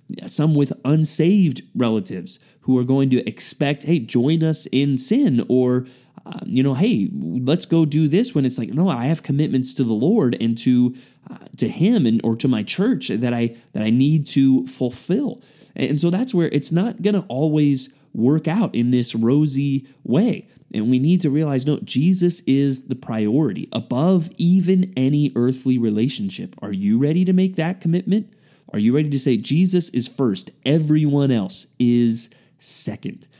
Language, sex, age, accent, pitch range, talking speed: English, male, 30-49, American, 125-170 Hz, 180 wpm